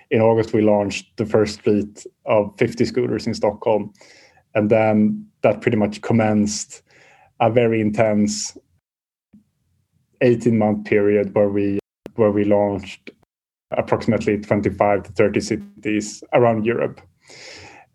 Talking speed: 115 wpm